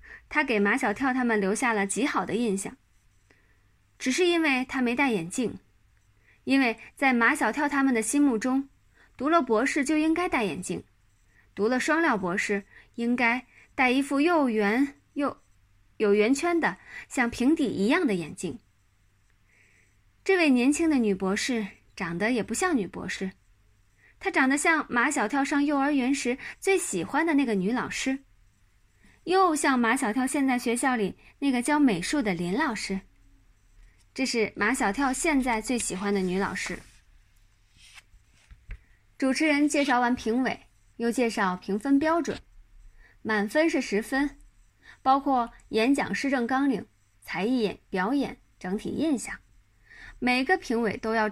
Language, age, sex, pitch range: Chinese, 20-39, female, 195-280 Hz